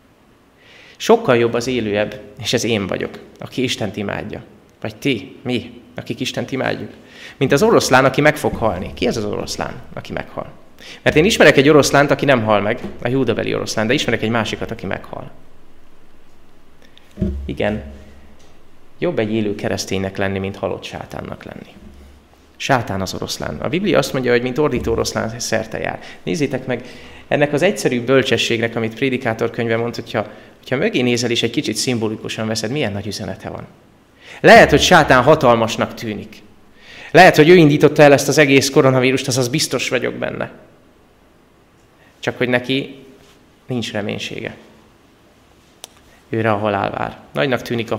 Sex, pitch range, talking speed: male, 100-125 Hz, 155 wpm